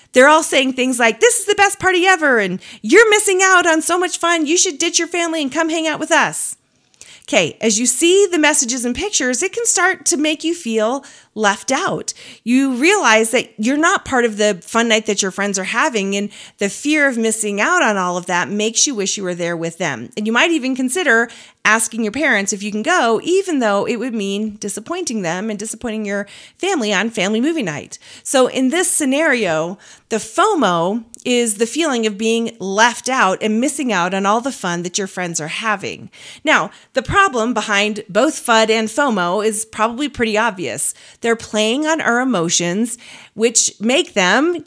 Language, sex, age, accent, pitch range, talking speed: English, female, 40-59, American, 210-310 Hz, 205 wpm